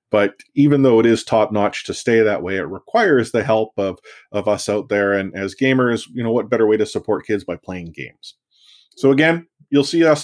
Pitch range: 105-140 Hz